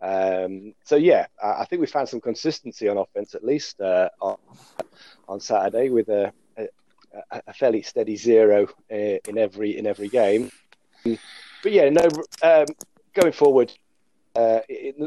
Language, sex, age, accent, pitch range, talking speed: English, male, 30-49, British, 105-130 Hz, 150 wpm